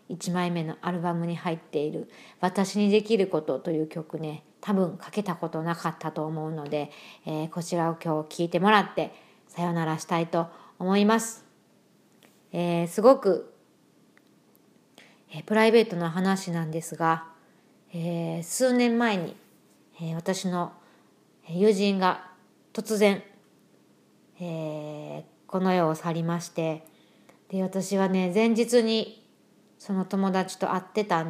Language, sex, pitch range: Japanese, female, 165-195 Hz